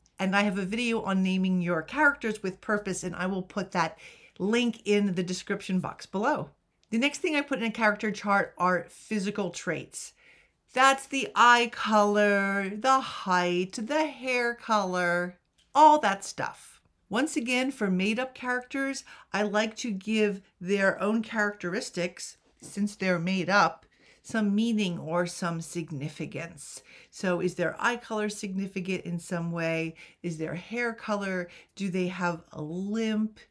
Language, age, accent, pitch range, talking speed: English, 50-69, American, 180-230 Hz, 155 wpm